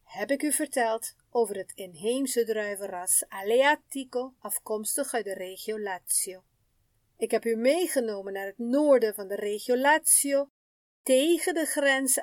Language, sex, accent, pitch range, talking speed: Dutch, female, Dutch, 205-275 Hz, 135 wpm